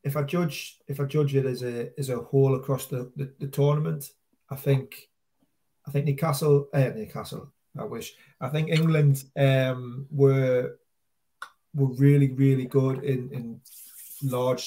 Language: English